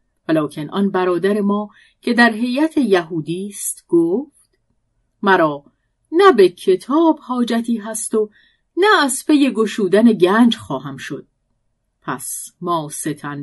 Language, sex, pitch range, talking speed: Persian, female, 165-250 Hz, 120 wpm